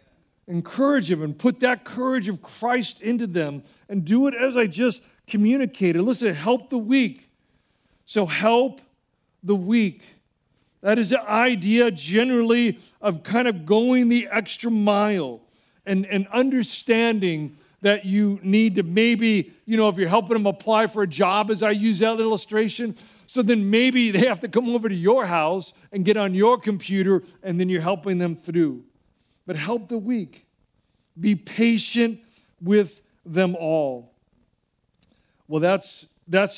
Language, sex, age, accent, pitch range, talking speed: English, male, 50-69, American, 160-220 Hz, 155 wpm